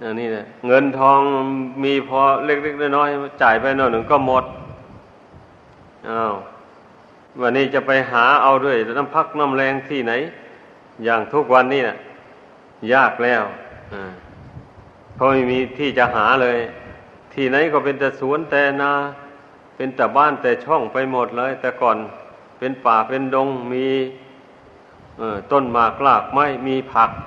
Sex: male